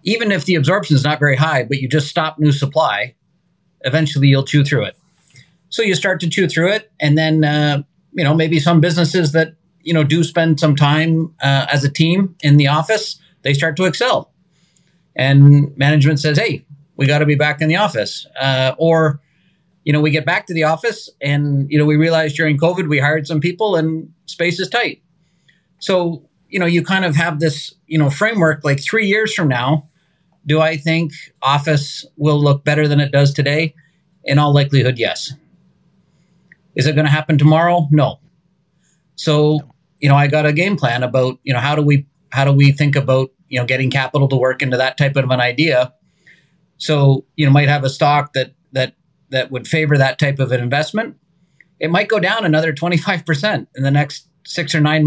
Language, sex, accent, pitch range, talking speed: English, male, American, 145-170 Hz, 205 wpm